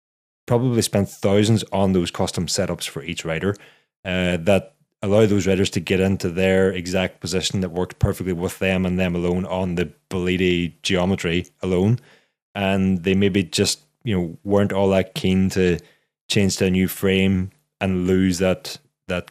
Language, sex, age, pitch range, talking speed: English, male, 20-39, 90-100 Hz, 170 wpm